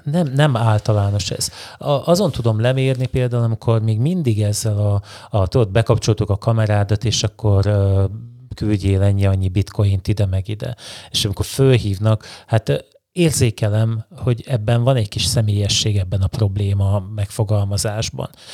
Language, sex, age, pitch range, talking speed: Hungarian, male, 30-49, 105-120 Hz, 140 wpm